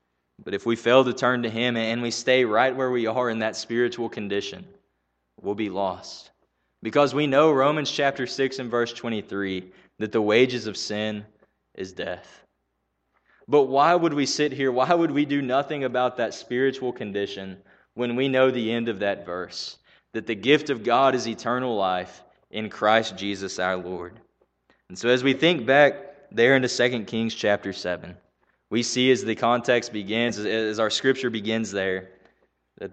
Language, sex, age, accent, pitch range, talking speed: English, male, 20-39, American, 100-130 Hz, 180 wpm